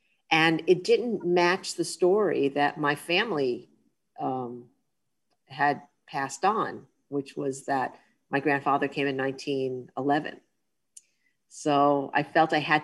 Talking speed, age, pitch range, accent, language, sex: 120 wpm, 40-59, 140-165 Hz, American, English, female